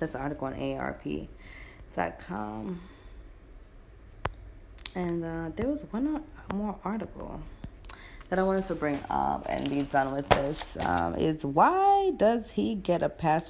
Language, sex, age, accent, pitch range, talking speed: English, female, 20-39, American, 135-200 Hz, 145 wpm